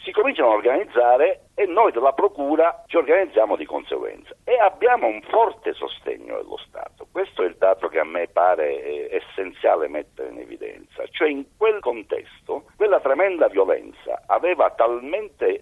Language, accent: Italian, native